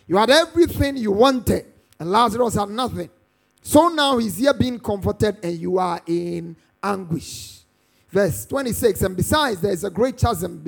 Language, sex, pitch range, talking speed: English, male, 180-245 Hz, 155 wpm